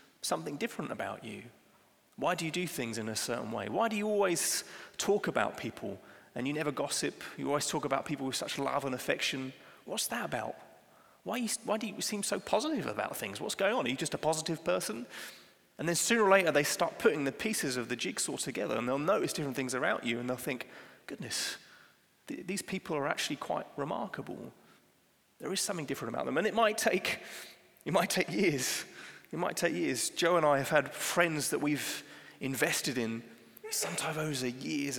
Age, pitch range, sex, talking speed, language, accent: 30-49, 130-165 Hz, male, 205 wpm, English, British